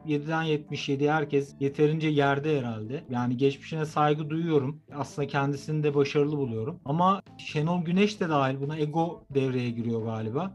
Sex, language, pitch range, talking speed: male, Turkish, 145-185 Hz, 140 wpm